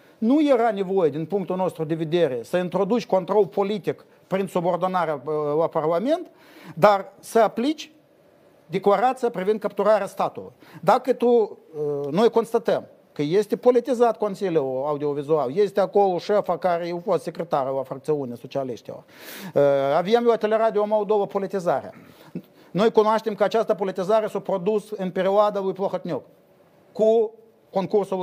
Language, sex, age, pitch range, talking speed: Romanian, male, 50-69, 175-225 Hz, 130 wpm